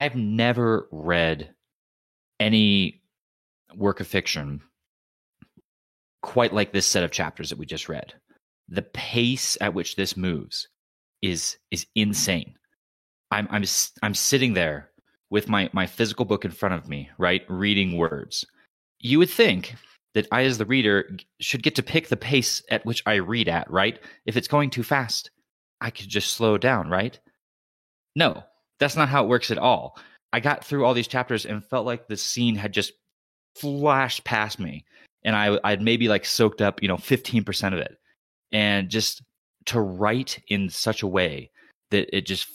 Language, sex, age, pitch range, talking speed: English, male, 30-49, 95-120 Hz, 170 wpm